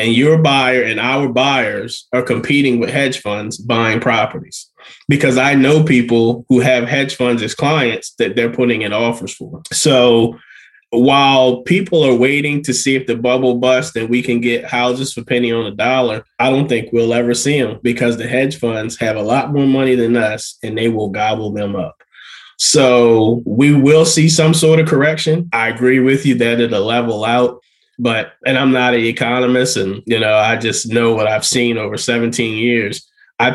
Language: English